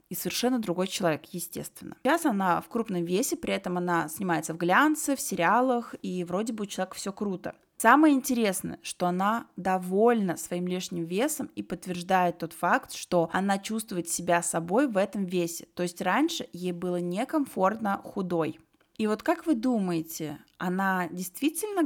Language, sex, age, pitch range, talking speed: Russian, female, 20-39, 180-225 Hz, 160 wpm